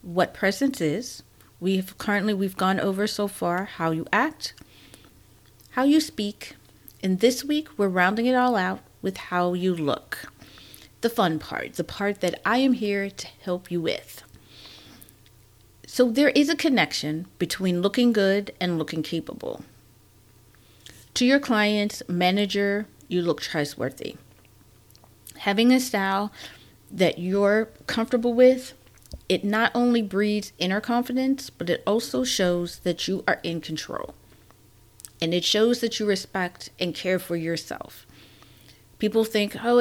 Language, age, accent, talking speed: English, 40-59, American, 140 wpm